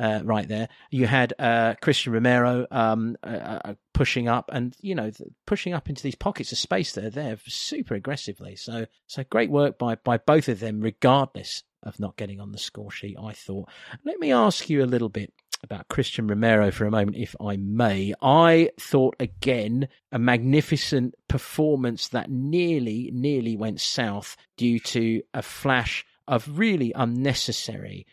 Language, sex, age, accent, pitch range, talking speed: English, male, 40-59, British, 105-140 Hz, 175 wpm